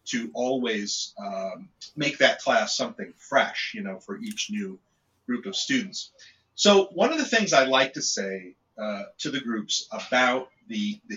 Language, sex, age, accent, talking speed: English, male, 40-59, American, 170 wpm